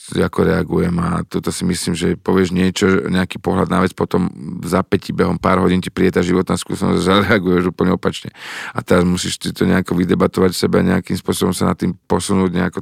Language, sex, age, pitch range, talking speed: Slovak, male, 40-59, 90-100 Hz, 195 wpm